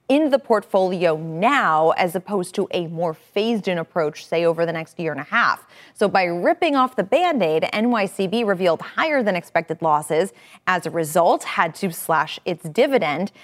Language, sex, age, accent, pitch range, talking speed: English, female, 30-49, American, 170-235 Hz, 165 wpm